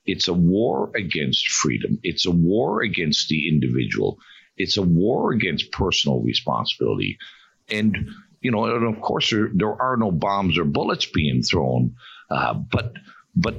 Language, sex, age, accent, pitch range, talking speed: English, male, 50-69, American, 90-135 Hz, 155 wpm